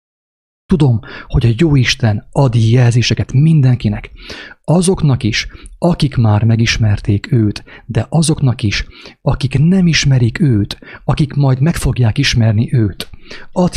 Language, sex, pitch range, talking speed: English, male, 110-140 Hz, 120 wpm